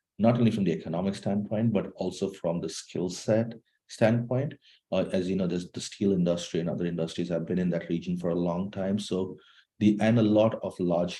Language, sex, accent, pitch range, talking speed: English, male, Indian, 85-105 Hz, 215 wpm